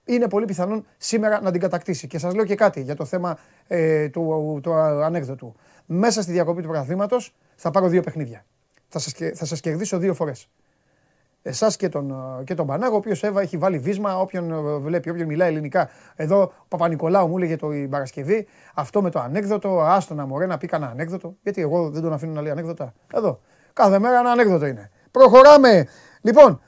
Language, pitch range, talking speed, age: Greek, 155-205 Hz, 180 wpm, 30-49